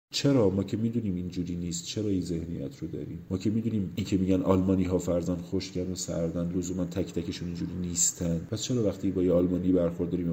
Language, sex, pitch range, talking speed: Persian, male, 90-110 Hz, 210 wpm